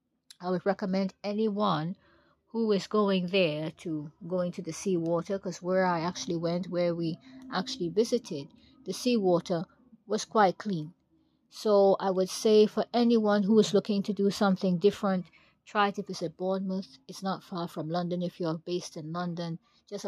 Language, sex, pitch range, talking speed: English, female, 170-200 Hz, 165 wpm